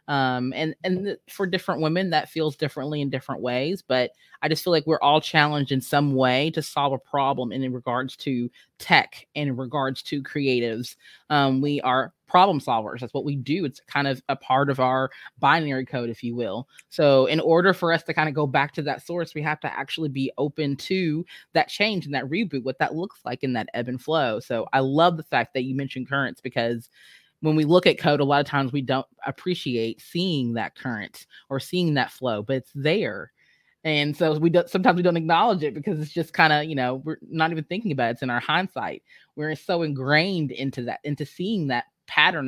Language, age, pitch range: English, 20-39, 130-155 Hz